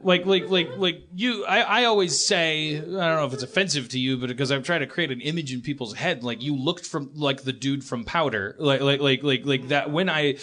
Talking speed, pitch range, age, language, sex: 260 wpm, 125-155 Hz, 30-49, English, male